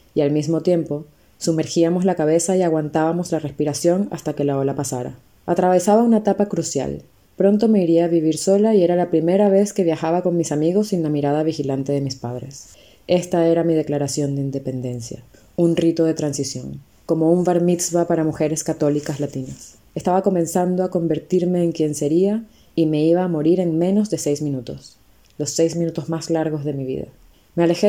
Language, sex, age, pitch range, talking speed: Spanish, female, 20-39, 150-180 Hz, 190 wpm